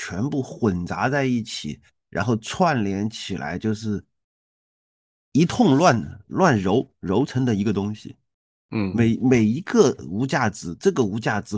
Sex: male